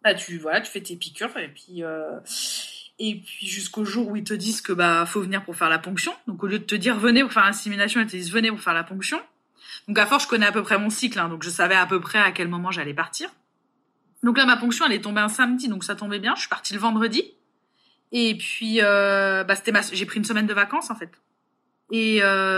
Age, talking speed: 20-39, 265 wpm